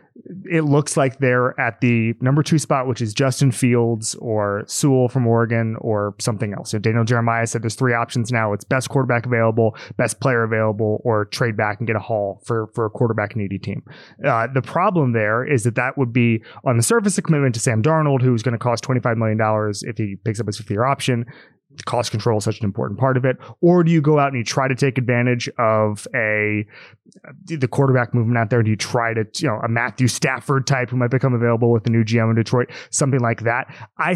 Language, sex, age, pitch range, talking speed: English, male, 30-49, 115-145 Hz, 230 wpm